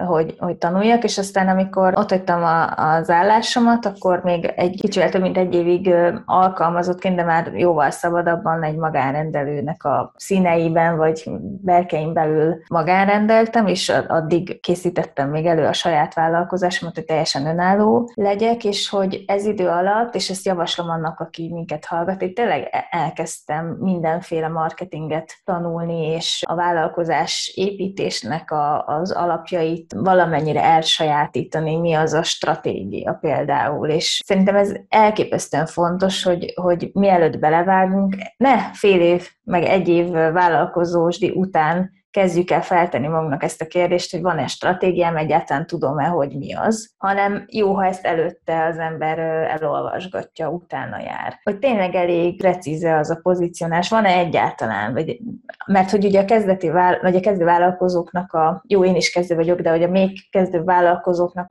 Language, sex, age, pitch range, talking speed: Hungarian, female, 20-39, 165-195 Hz, 140 wpm